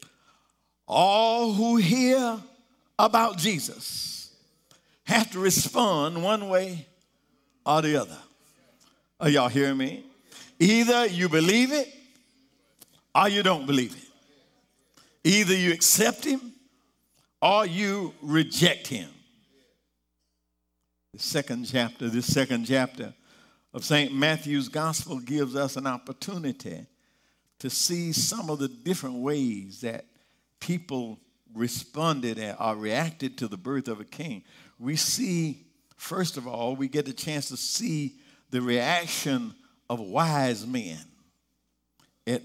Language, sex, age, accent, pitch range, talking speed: English, male, 60-79, American, 130-190 Hz, 115 wpm